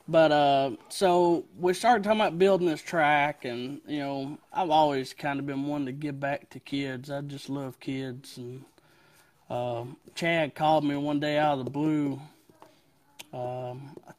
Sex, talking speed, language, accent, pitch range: male, 175 wpm, English, American, 140-180 Hz